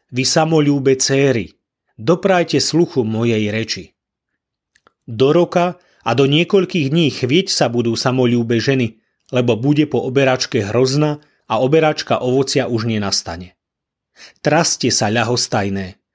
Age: 30-49